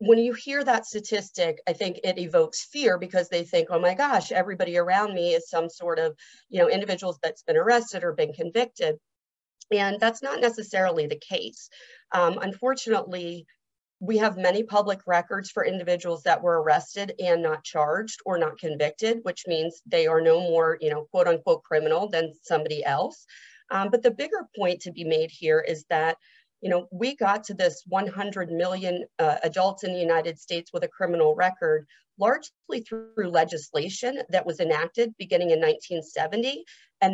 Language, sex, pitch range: English, female, 170-235 Hz